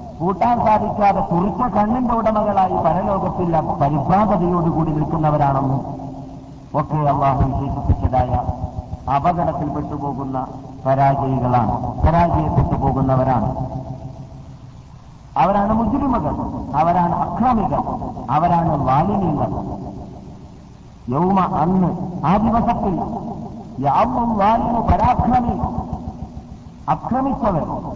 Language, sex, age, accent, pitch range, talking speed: Malayalam, male, 50-69, native, 145-225 Hz, 60 wpm